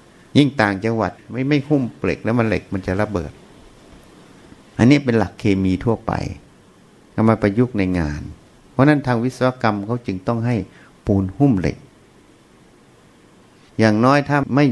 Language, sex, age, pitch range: Thai, male, 60-79, 110-155 Hz